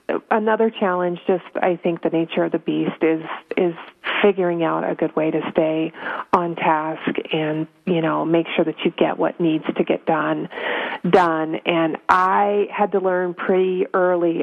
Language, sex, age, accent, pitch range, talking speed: English, female, 30-49, American, 165-190 Hz, 175 wpm